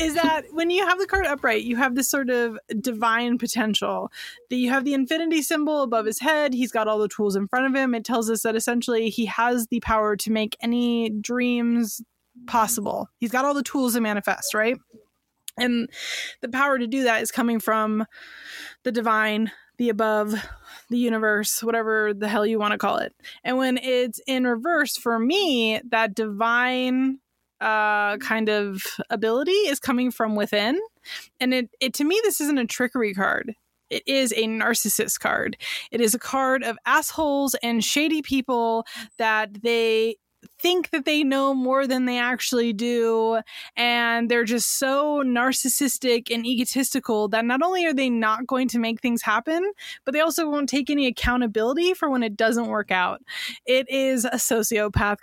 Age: 20-39